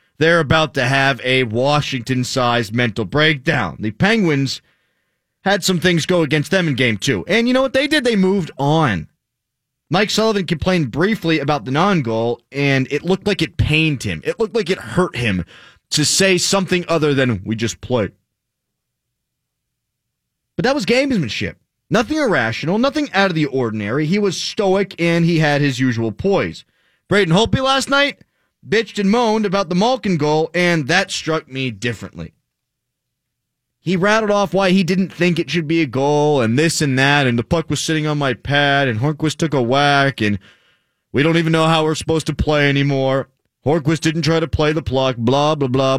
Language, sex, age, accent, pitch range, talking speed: English, male, 30-49, American, 130-185 Hz, 185 wpm